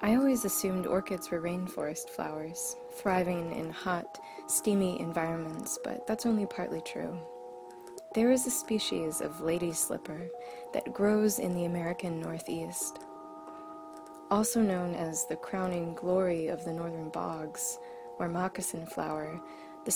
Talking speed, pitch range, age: 130 wpm, 160-195 Hz, 20-39